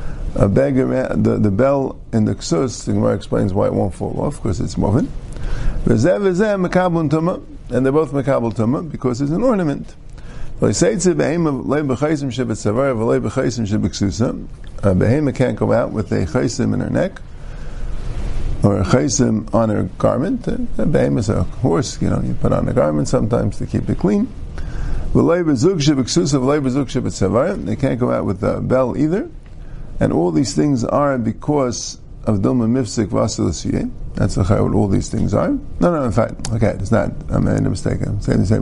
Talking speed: 155 wpm